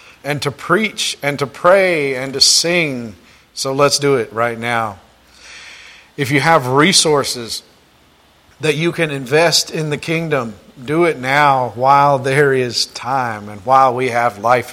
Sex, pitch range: male, 120-155 Hz